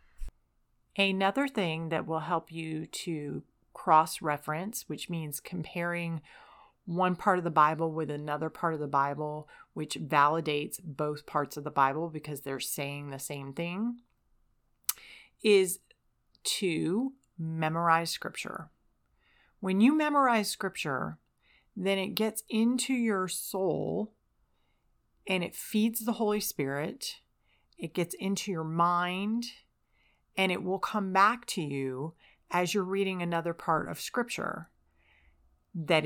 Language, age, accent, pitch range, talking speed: English, 30-49, American, 155-195 Hz, 125 wpm